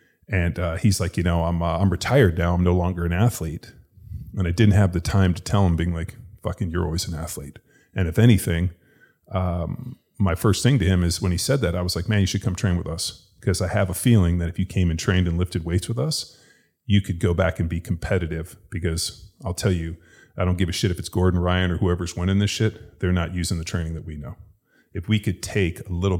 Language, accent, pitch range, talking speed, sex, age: English, American, 85-100 Hz, 255 wpm, male, 30-49